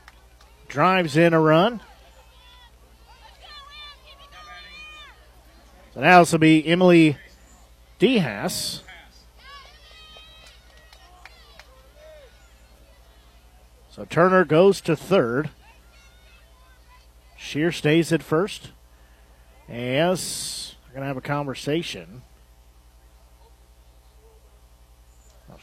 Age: 50-69